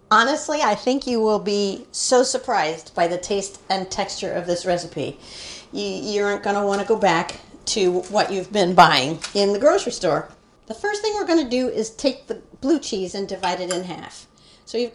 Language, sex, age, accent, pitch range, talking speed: English, female, 50-69, American, 180-240 Hz, 200 wpm